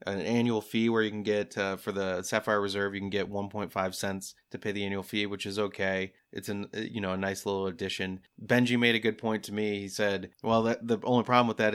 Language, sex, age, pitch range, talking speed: English, male, 30-49, 95-110 Hz, 250 wpm